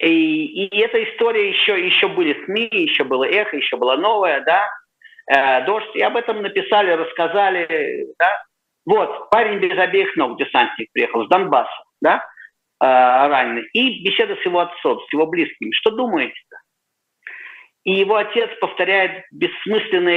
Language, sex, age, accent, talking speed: Russian, male, 50-69, native, 150 wpm